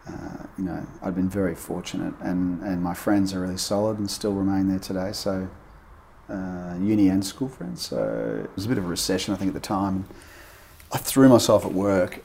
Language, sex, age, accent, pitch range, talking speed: English, male, 30-49, Australian, 80-95 Hz, 215 wpm